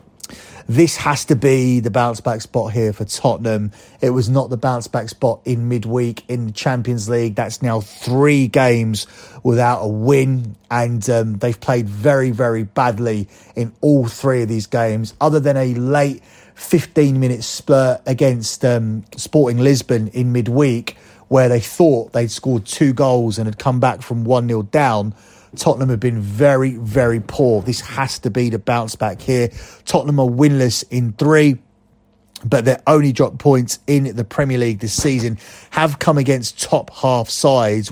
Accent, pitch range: British, 115-135 Hz